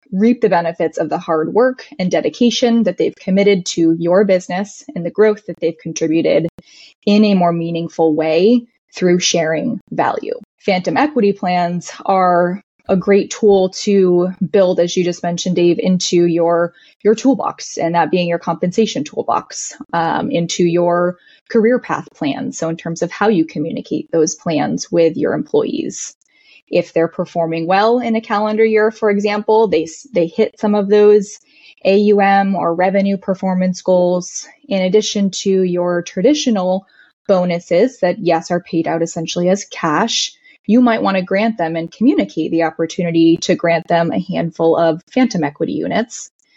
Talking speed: 160 wpm